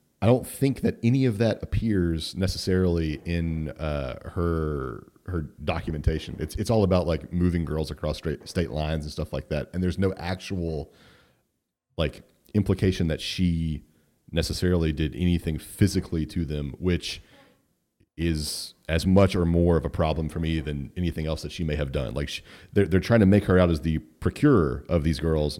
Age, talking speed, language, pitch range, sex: 30-49, 175 wpm, English, 80-95 Hz, male